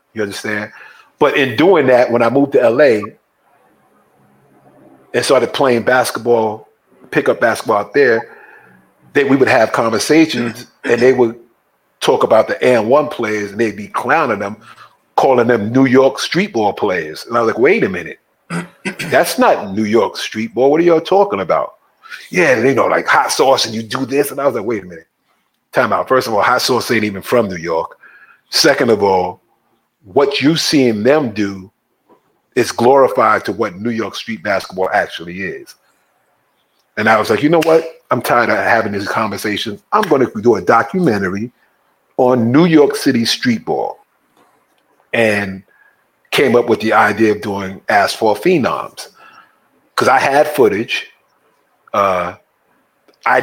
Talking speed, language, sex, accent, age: 170 wpm, English, male, American, 30-49